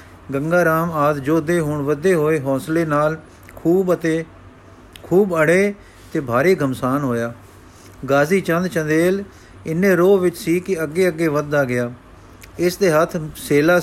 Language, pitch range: Punjabi, 140-175 Hz